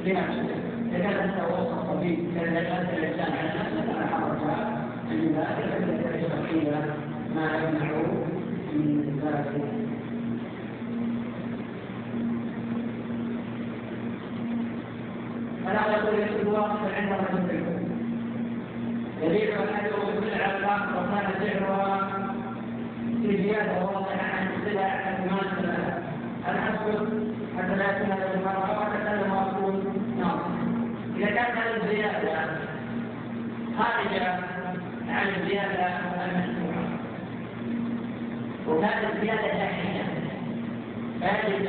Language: Arabic